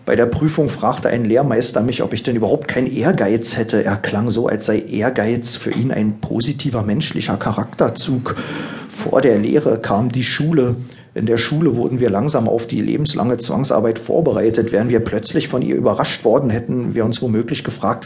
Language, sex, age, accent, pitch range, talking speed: German, male, 50-69, German, 115-135 Hz, 185 wpm